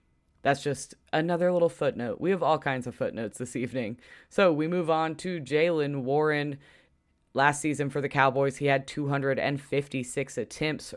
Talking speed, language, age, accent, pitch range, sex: 160 wpm, English, 20-39, American, 135-150 Hz, female